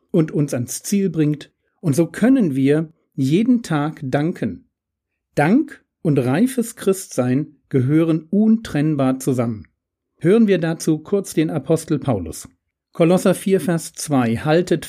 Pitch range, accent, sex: 135-180 Hz, German, male